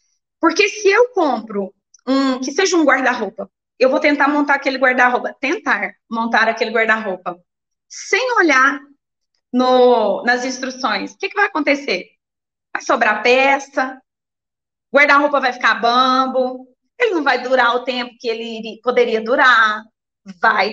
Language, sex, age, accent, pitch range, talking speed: Portuguese, female, 20-39, Brazilian, 225-290 Hz, 130 wpm